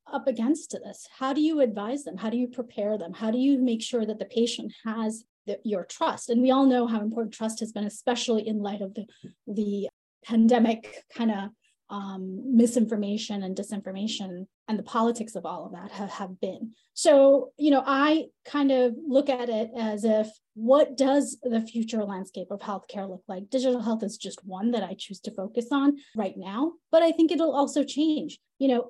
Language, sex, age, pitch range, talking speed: English, female, 30-49, 210-265 Hz, 200 wpm